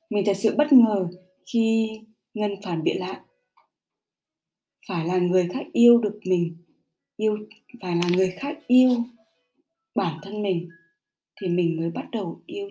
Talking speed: 150 wpm